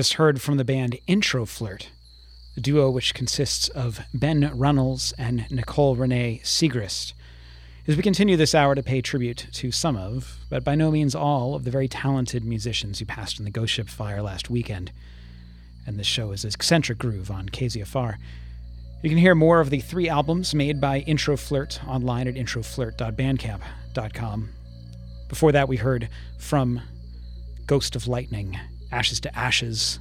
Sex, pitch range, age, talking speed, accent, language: male, 100-140 Hz, 40-59, 165 wpm, American, English